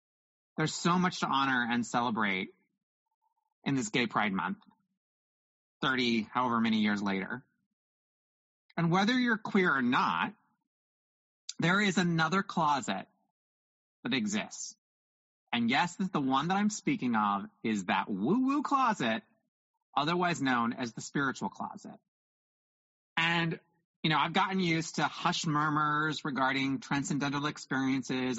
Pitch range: 145-205 Hz